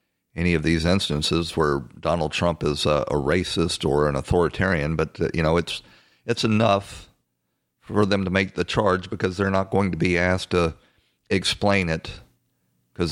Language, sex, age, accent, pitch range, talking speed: English, male, 50-69, American, 80-95 Hz, 165 wpm